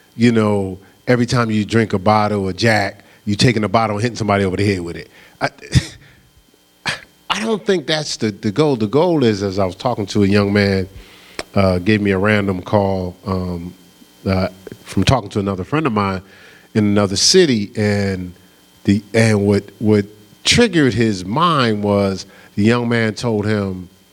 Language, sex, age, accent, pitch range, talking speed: English, male, 40-59, American, 95-140 Hz, 180 wpm